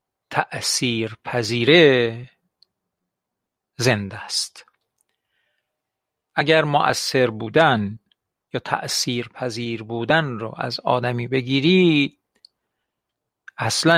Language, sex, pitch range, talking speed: Persian, male, 120-145 Hz, 60 wpm